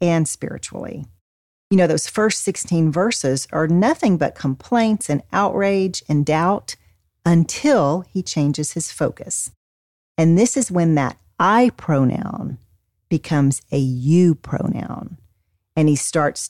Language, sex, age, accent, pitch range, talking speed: English, female, 40-59, American, 130-185 Hz, 125 wpm